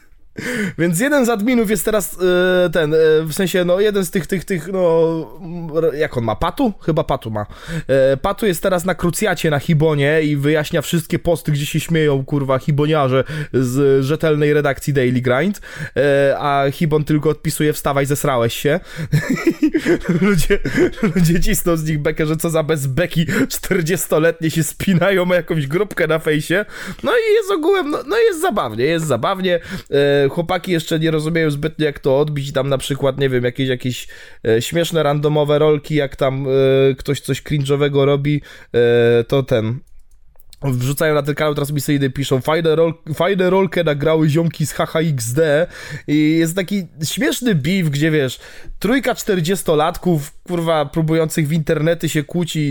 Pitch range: 145-180 Hz